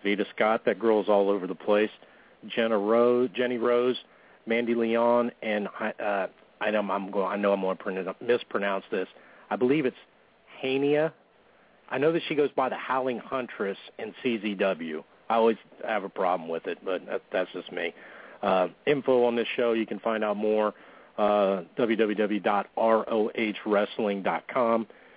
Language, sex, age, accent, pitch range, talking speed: English, male, 40-59, American, 115-130 Hz, 150 wpm